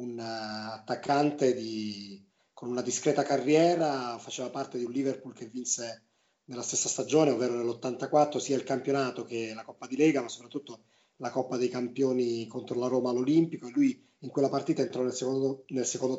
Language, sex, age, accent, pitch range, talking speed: Italian, male, 30-49, native, 120-145 Hz, 175 wpm